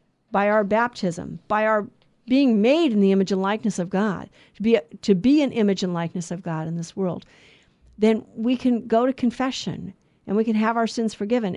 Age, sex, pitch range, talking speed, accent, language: 50-69, female, 200-250 Hz, 215 wpm, American, English